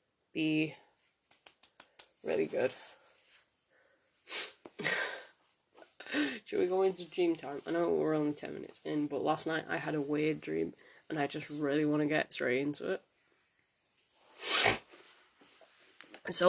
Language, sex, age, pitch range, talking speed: English, female, 20-39, 155-240 Hz, 125 wpm